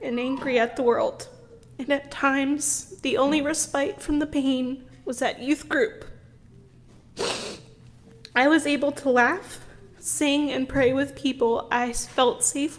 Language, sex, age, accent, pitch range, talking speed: English, female, 20-39, American, 240-290 Hz, 145 wpm